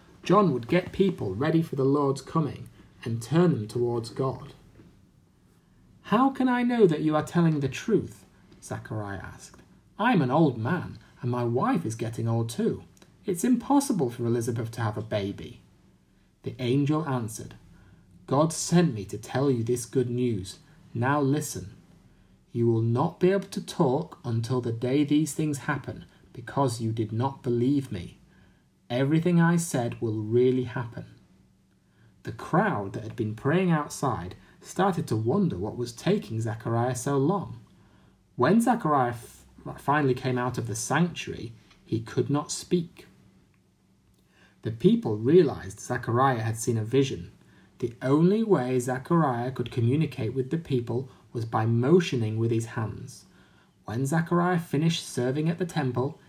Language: English